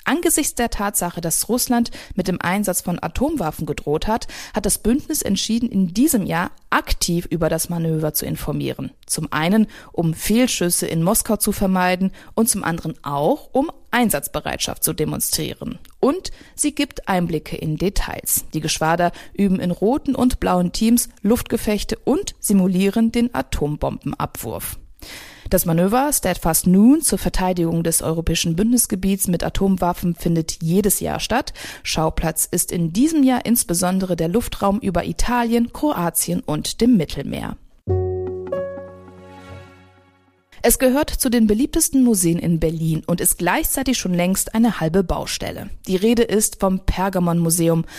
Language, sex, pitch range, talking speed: German, female, 165-225 Hz, 140 wpm